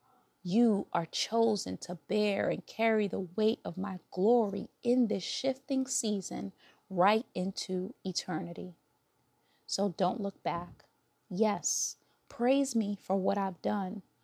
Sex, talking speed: female, 125 wpm